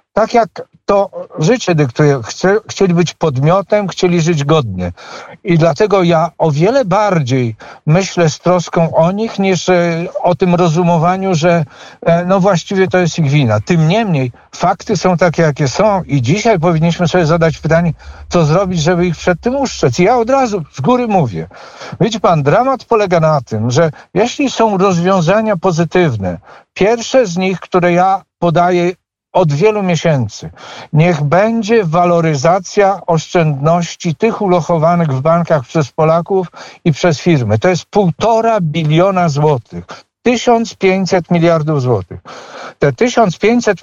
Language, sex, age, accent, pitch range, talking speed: Polish, male, 50-69, native, 165-200 Hz, 145 wpm